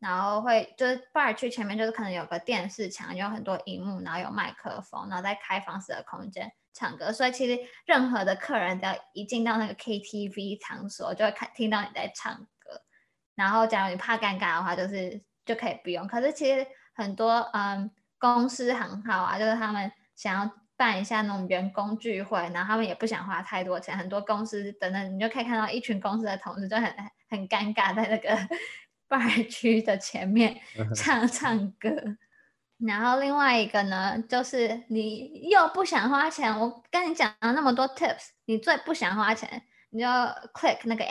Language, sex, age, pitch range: Chinese, female, 10-29, 200-240 Hz